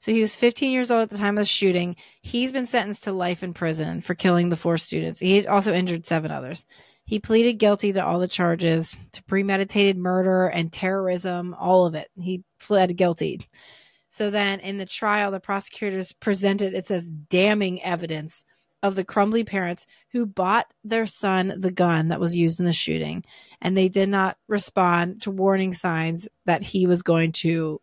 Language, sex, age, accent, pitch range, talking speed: English, female, 30-49, American, 180-215 Hz, 190 wpm